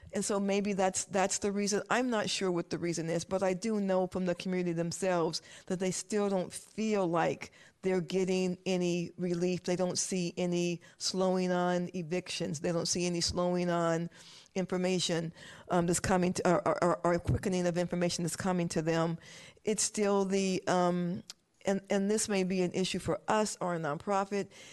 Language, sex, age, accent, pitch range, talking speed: English, female, 50-69, American, 175-190 Hz, 185 wpm